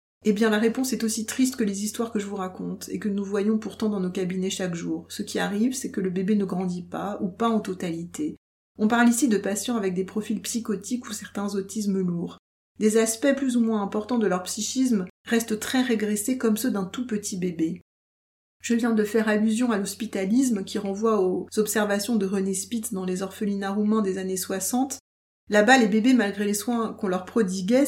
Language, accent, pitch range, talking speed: French, French, 195-230 Hz, 215 wpm